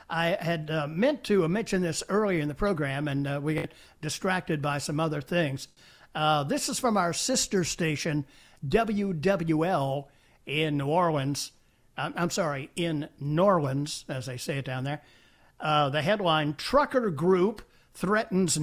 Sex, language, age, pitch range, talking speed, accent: male, English, 60-79, 155-210 Hz, 160 wpm, American